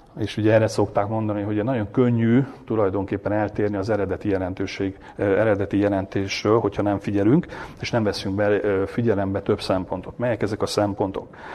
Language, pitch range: Hungarian, 100-120 Hz